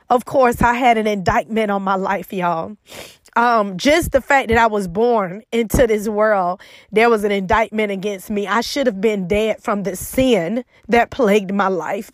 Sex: female